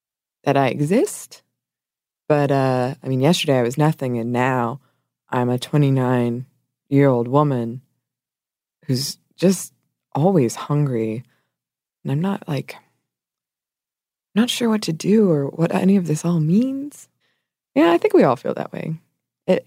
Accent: American